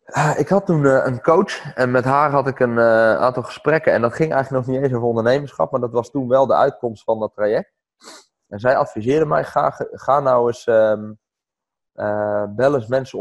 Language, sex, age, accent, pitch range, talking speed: Dutch, male, 20-39, Dutch, 105-130 Hz, 205 wpm